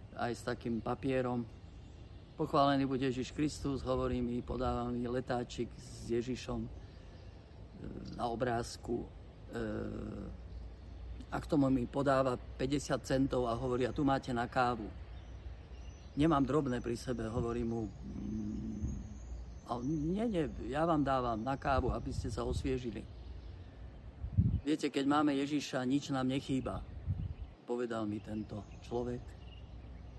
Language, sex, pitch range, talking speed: Slovak, male, 95-130 Hz, 120 wpm